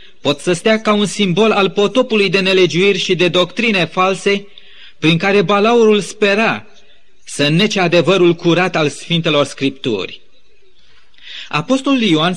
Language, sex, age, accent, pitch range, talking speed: Romanian, male, 30-49, native, 175-215 Hz, 130 wpm